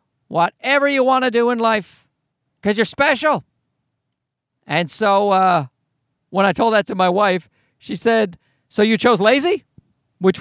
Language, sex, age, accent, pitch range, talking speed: English, male, 40-59, American, 150-245 Hz, 155 wpm